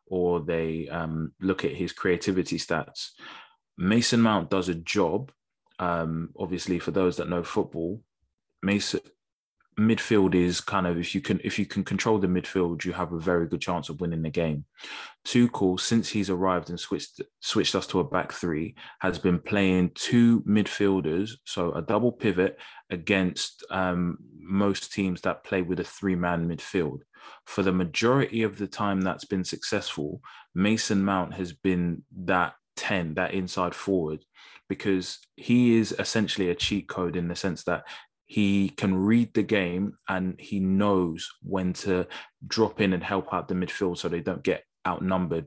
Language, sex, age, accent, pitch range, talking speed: English, male, 20-39, British, 90-100 Hz, 165 wpm